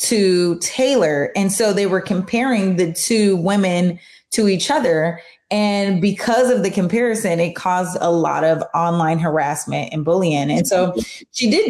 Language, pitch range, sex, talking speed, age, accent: English, 170-215 Hz, female, 160 wpm, 20-39, American